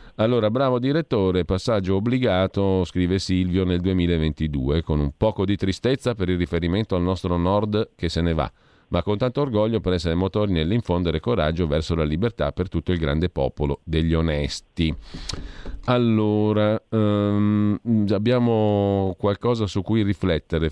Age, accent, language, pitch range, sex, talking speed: 40-59, native, Italian, 80-105 Hz, male, 140 wpm